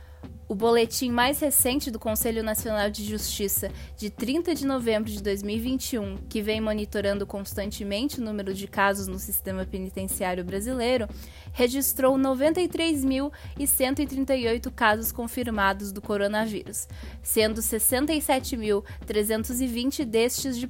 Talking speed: 105 wpm